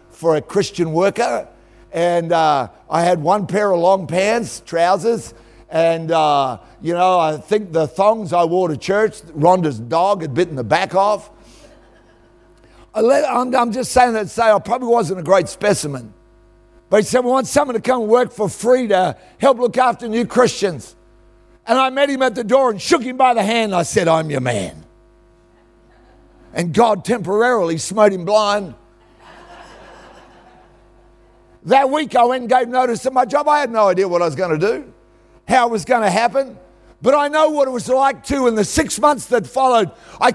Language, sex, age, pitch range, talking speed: English, male, 60-79, 185-255 Hz, 190 wpm